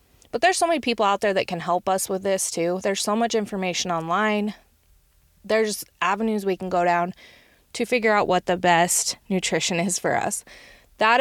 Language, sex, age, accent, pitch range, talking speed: English, female, 20-39, American, 175-215 Hz, 195 wpm